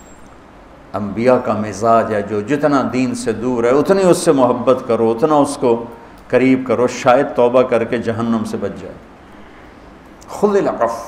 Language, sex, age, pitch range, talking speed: Urdu, male, 60-79, 110-140 Hz, 155 wpm